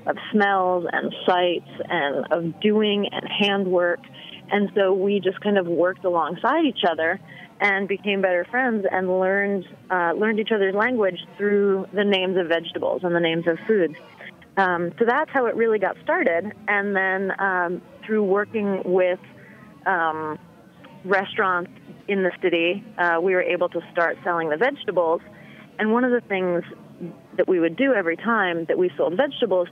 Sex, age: female, 30-49